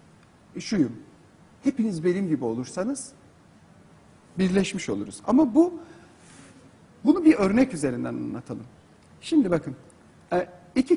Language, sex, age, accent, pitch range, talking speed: Turkish, male, 50-69, native, 190-270 Hz, 95 wpm